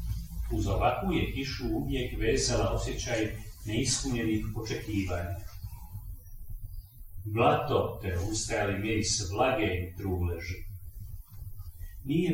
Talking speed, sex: 90 wpm, male